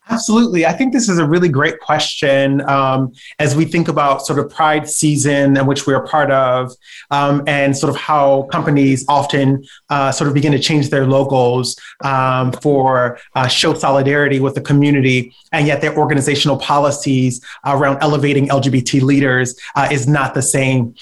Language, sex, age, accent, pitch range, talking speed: English, male, 30-49, American, 135-155 Hz, 170 wpm